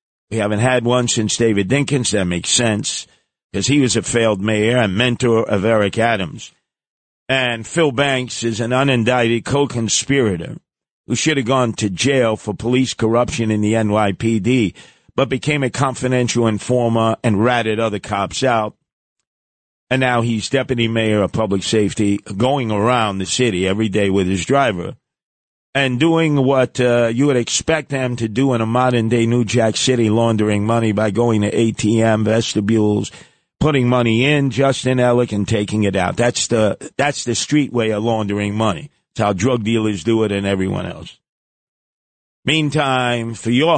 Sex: male